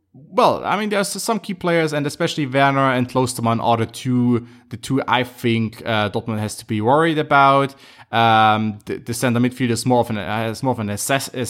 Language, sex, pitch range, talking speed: English, male, 110-130 Hz, 215 wpm